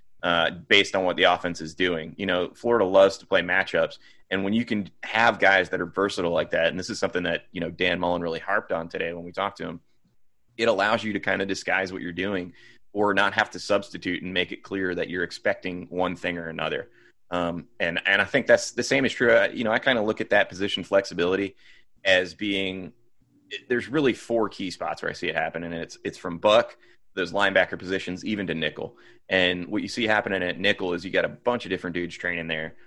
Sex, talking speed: male, 240 wpm